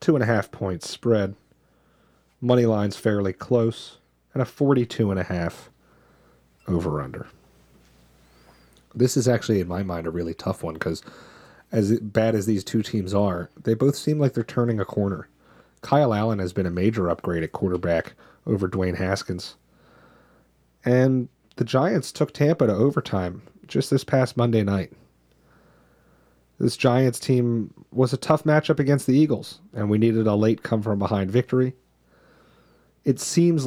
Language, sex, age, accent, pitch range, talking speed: English, male, 30-49, American, 90-120 Hz, 150 wpm